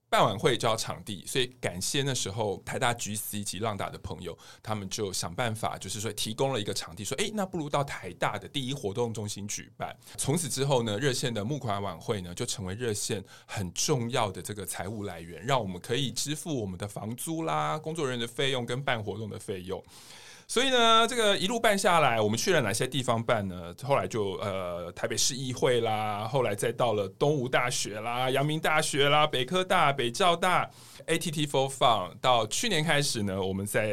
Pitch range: 100-140 Hz